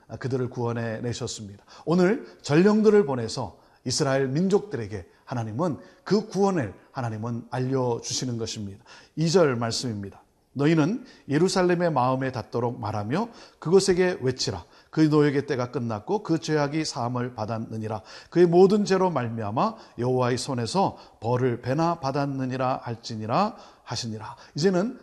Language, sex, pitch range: Korean, male, 120-175 Hz